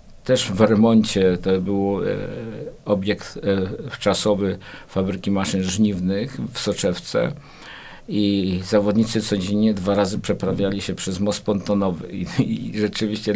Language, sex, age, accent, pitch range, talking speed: Polish, male, 50-69, native, 95-105 Hz, 120 wpm